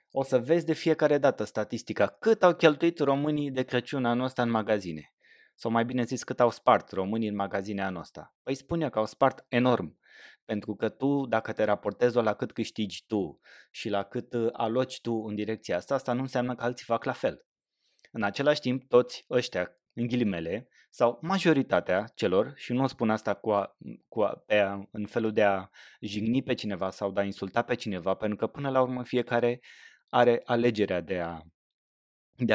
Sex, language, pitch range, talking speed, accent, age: male, Romanian, 105-130 Hz, 190 wpm, native, 20-39